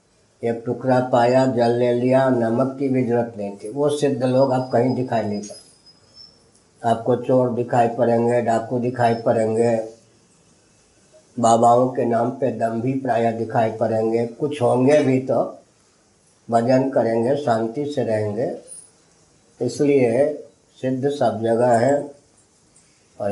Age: 50-69